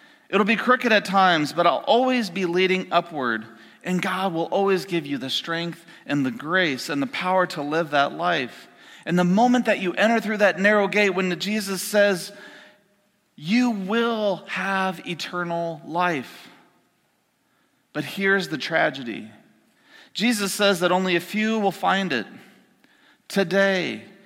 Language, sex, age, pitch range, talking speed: English, male, 40-59, 170-210 Hz, 150 wpm